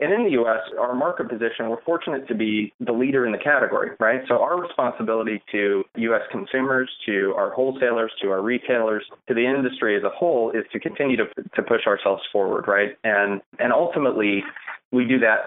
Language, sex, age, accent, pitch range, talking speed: English, male, 30-49, American, 105-125 Hz, 195 wpm